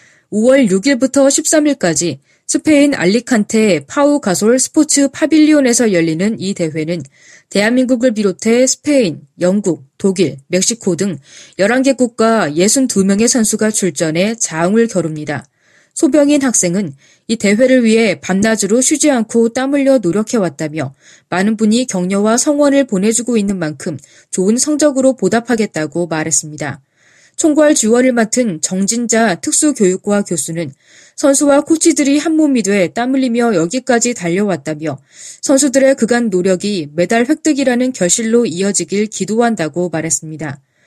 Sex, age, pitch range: female, 20-39, 180-260 Hz